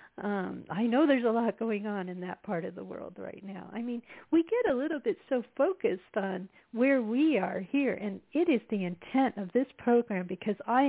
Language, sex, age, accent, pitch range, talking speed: English, female, 50-69, American, 200-270 Hz, 220 wpm